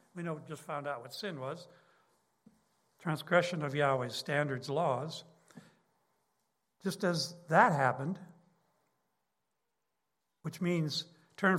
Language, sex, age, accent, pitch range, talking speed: English, male, 60-79, American, 155-195 Hz, 105 wpm